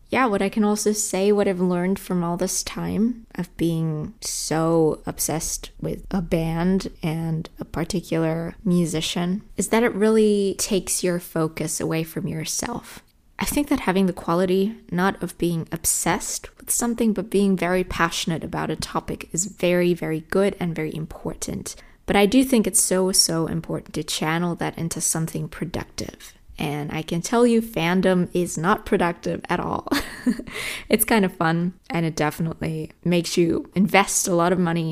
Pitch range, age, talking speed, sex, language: 165-200 Hz, 20-39, 170 wpm, female, English